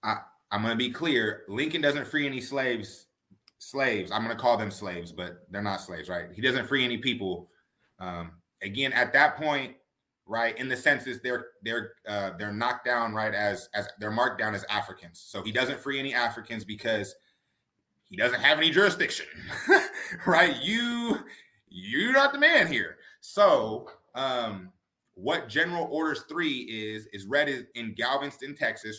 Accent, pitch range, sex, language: American, 105-145 Hz, male, English